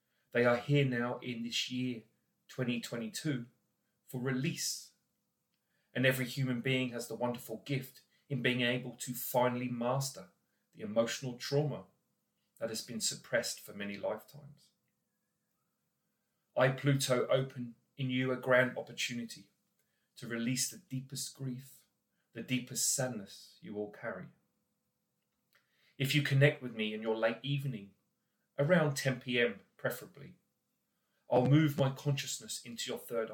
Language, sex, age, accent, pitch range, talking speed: English, male, 30-49, British, 120-140 Hz, 130 wpm